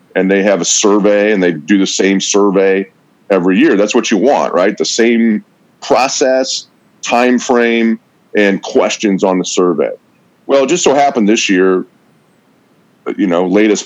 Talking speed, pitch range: 165 wpm, 105-140 Hz